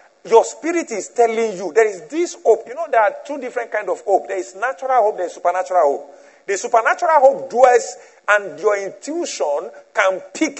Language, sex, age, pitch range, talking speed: English, male, 50-69, 210-310 Hz, 200 wpm